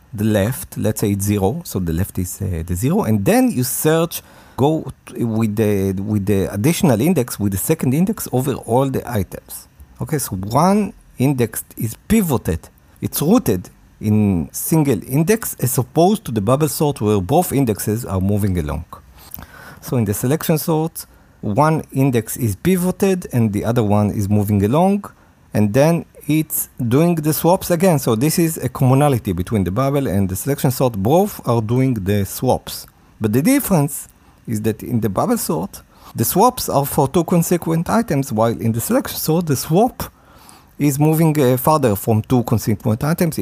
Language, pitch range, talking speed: English, 105-160 Hz, 175 wpm